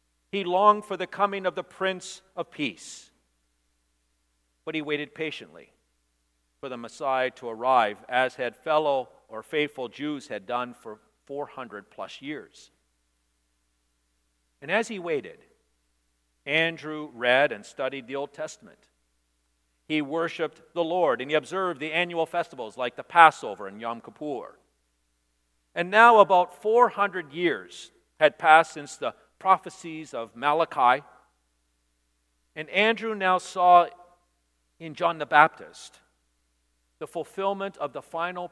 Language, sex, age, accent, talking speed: English, male, 50-69, American, 130 wpm